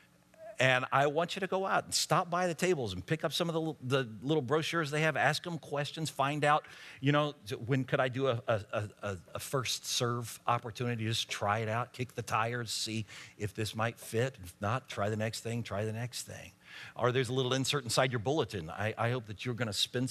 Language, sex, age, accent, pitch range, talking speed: English, male, 50-69, American, 90-130 Hz, 235 wpm